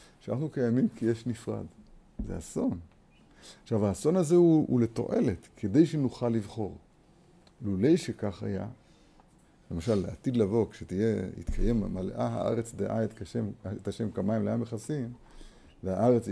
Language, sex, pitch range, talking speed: Hebrew, male, 100-130 Hz, 125 wpm